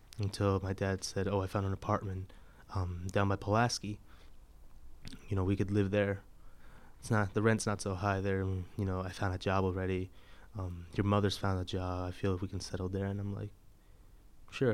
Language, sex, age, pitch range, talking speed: English, male, 20-39, 95-105 Hz, 210 wpm